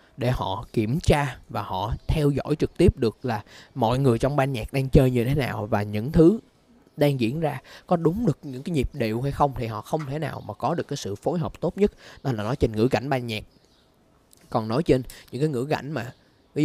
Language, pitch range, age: Vietnamese, 110-140 Hz, 20-39